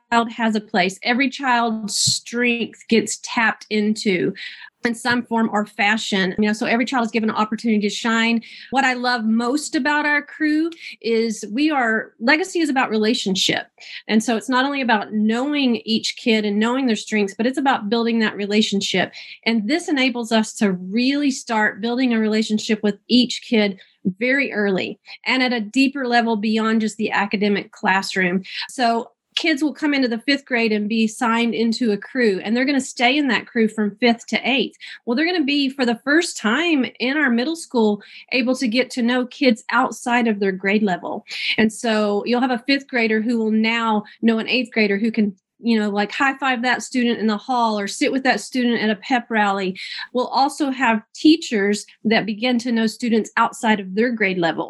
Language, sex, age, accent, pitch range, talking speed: English, female, 30-49, American, 215-250 Hz, 200 wpm